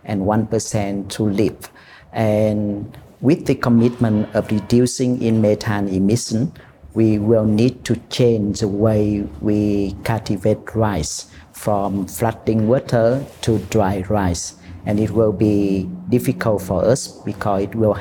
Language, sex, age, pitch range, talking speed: English, male, 50-69, 100-115 Hz, 130 wpm